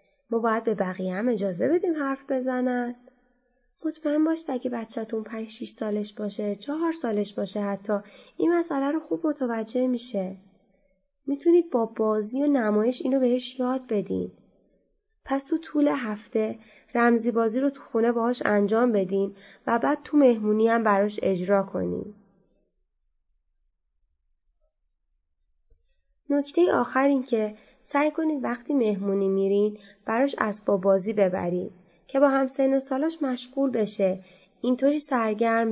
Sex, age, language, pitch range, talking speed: female, 20-39, Persian, 200-265 Hz, 135 wpm